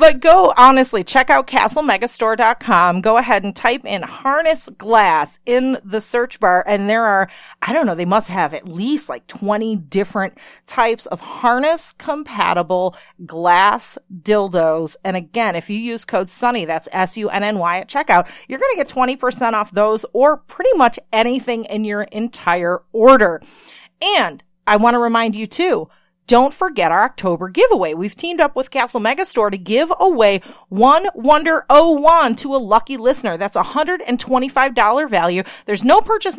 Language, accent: English, American